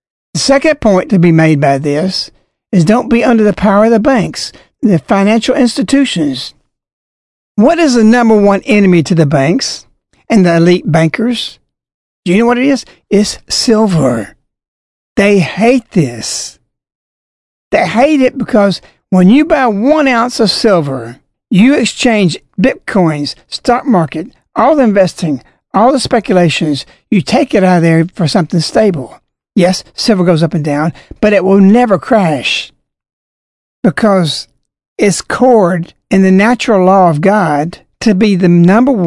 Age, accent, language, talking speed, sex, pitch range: 60-79, American, English, 150 wpm, male, 170-230 Hz